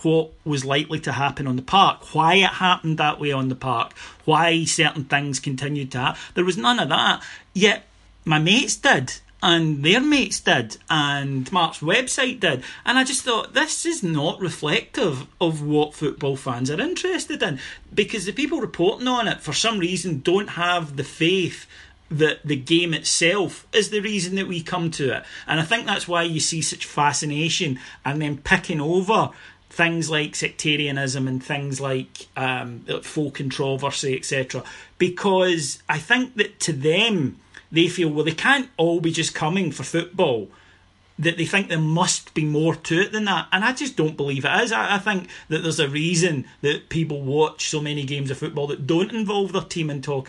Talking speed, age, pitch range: 190 wpm, 40-59, 145-185 Hz